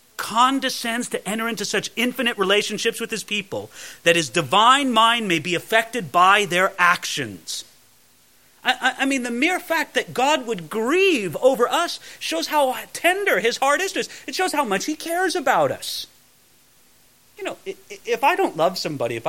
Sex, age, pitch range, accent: male, 40-59, 185-280 Hz, American